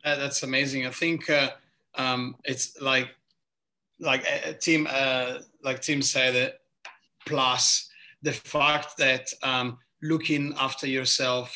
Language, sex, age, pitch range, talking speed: English, male, 30-49, 125-145 Hz, 140 wpm